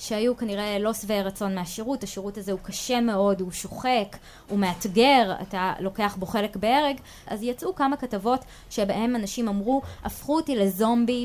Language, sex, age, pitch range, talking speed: Hebrew, female, 20-39, 195-235 Hz, 160 wpm